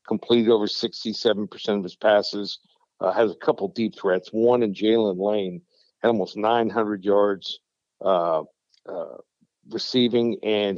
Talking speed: 145 wpm